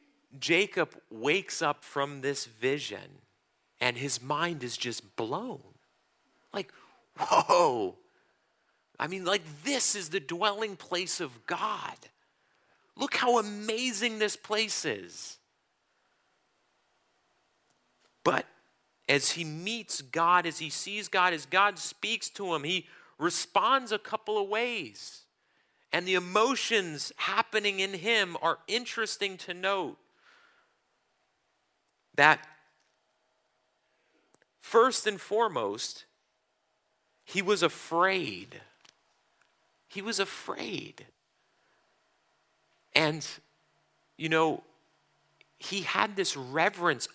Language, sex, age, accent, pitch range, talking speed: English, male, 40-59, American, 155-220 Hz, 100 wpm